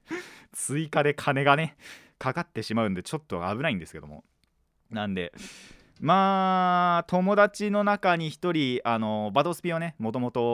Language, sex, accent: Japanese, male, native